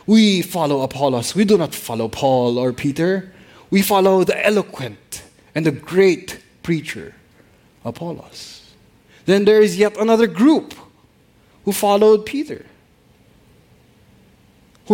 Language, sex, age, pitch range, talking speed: English, male, 20-39, 150-215 Hz, 115 wpm